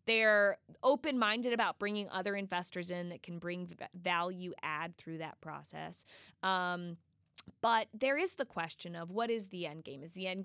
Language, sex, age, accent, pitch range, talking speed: English, female, 20-39, American, 180-240 Hz, 180 wpm